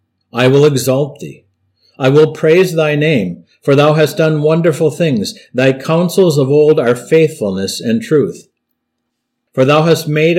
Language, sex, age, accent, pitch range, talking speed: English, male, 50-69, American, 120-160 Hz, 155 wpm